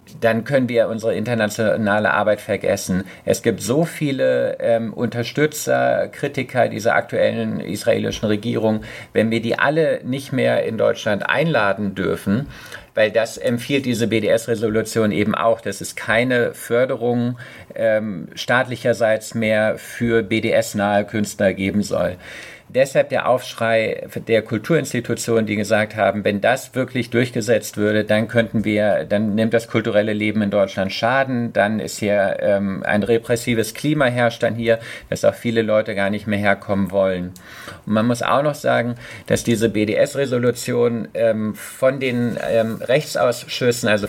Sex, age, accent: male, 50-69, German